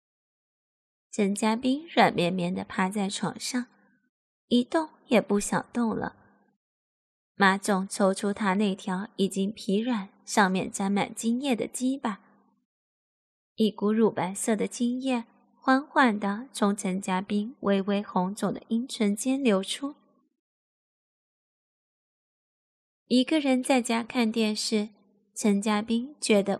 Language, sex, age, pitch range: Chinese, female, 20-39, 205-250 Hz